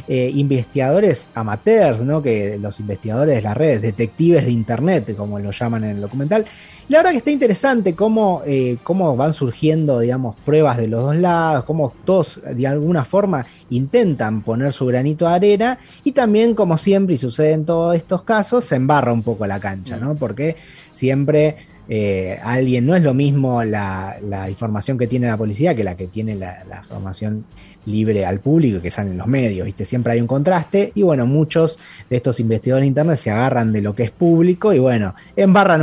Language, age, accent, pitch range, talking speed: Spanish, 30-49, Argentinian, 115-165 Hz, 195 wpm